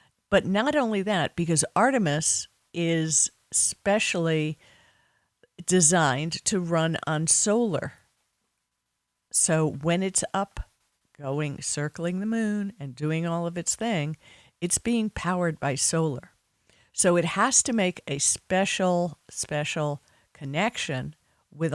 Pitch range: 145-195 Hz